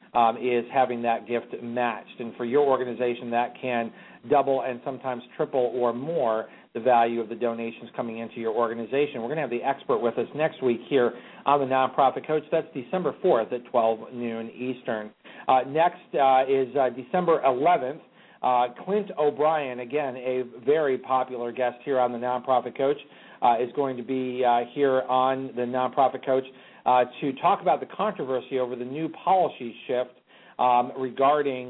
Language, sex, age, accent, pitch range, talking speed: English, male, 40-59, American, 120-135 Hz, 175 wpm